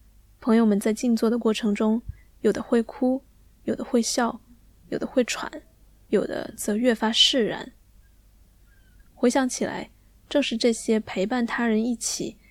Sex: female